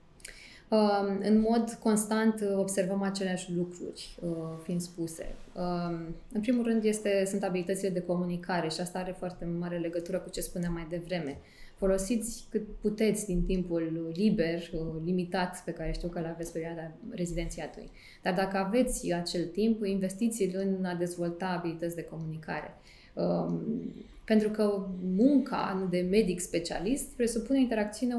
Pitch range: 175-215 Hz